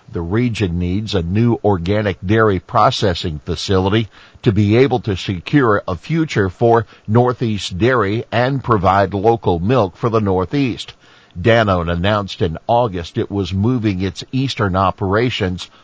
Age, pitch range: 50-69, 100-125 Hz